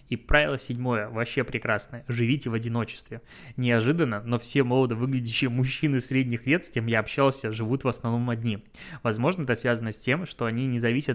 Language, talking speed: Russian, 180 wpm